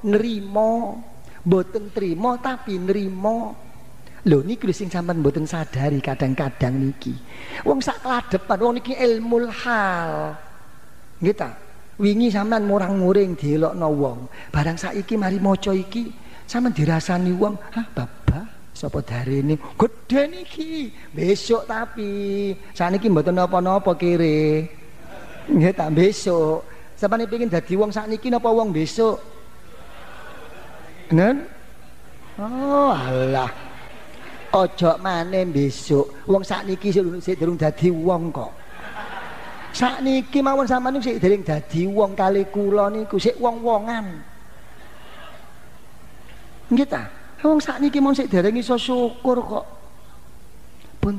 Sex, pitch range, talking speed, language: male, 165-225 Hz, 110 wpm, Indonesian